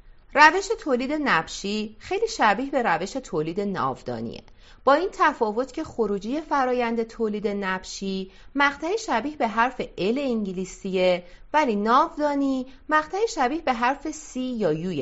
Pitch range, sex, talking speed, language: 185-280 Hz, female, 130 wpm, Persian